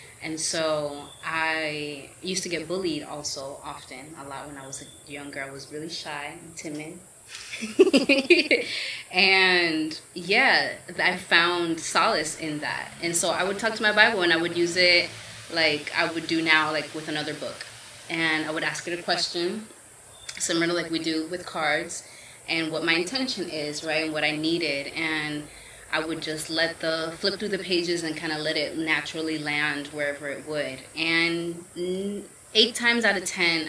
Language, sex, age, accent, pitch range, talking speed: English, female, 20-39, American, 155-175 Hz, 180 wpm